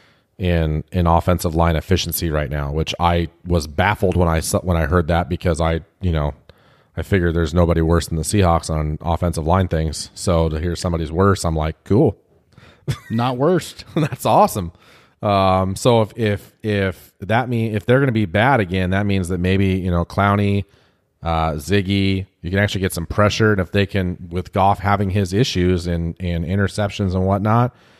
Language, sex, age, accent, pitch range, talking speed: English, male, 30-49, American, 85-105 Hz, 190 wpm